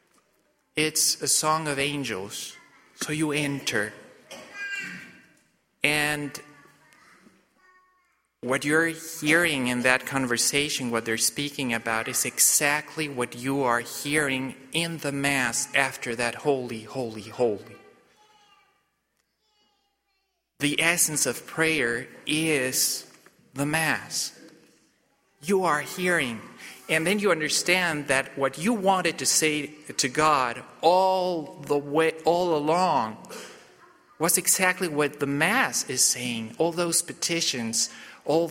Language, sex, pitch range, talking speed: English, male, 135-165 Hz, 110 wpm